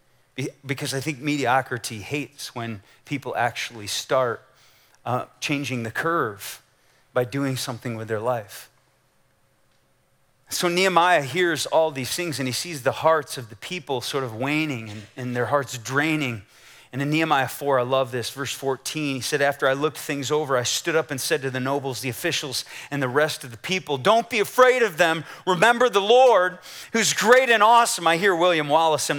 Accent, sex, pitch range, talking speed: American, male, 145-235 Hz, 185 wpm